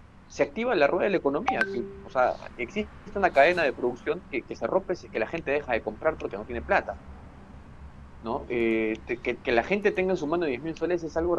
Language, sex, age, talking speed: Spanish, male, 40-59, 220 wpm